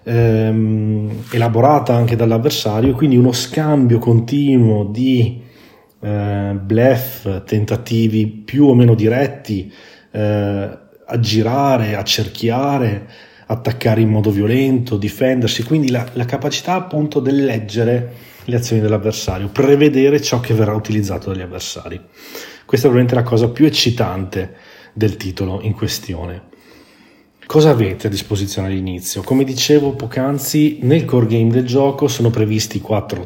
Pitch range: 105-130 Hz